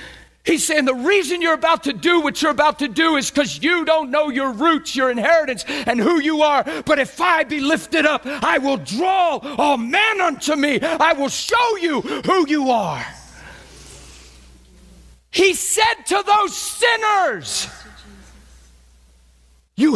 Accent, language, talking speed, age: American, English, 155 wpm, 50-69